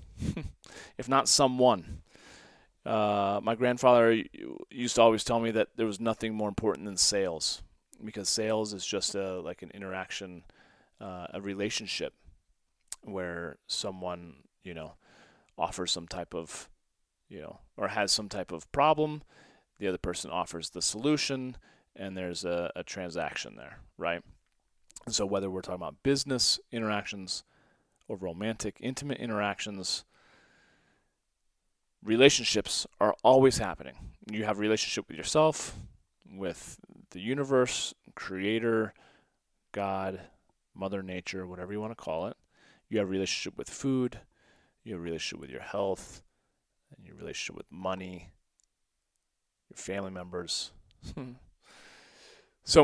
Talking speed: 130 wpm